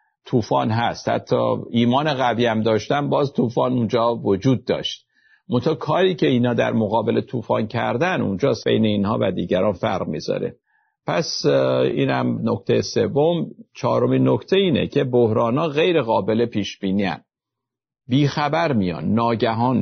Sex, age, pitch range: male, 50-69, 110-135 Hz